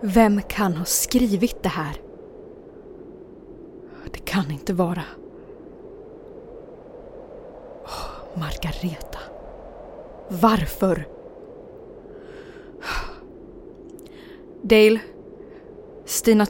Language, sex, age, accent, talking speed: Swedish, female, 20-39, native, 50 wpm